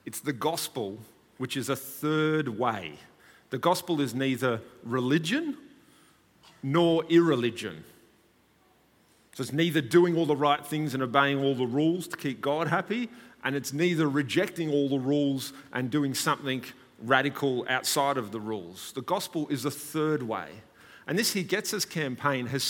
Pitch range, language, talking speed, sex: 130-175 Hz, English, 160 wpm, male